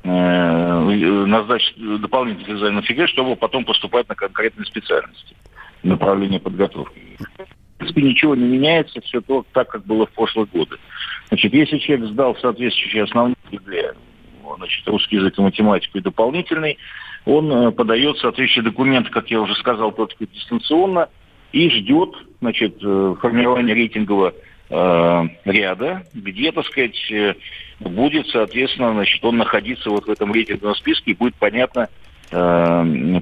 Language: Russian